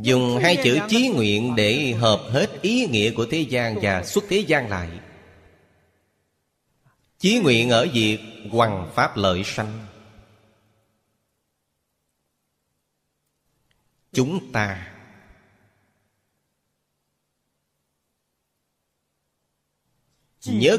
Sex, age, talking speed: male, 30-49, 85 wpm